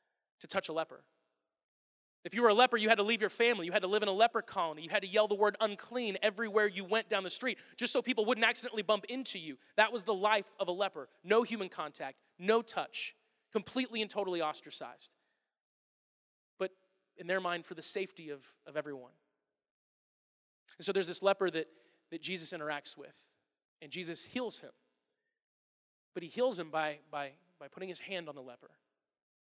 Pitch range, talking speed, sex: 155-215 Hz, 195 wpm, male